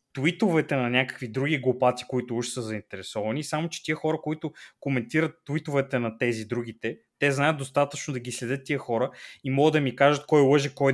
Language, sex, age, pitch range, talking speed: Bulgarian, male, 20-39, 125-160 Hz, 190 wpm